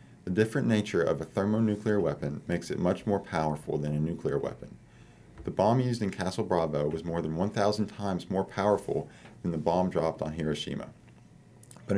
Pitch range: 85-105 Hz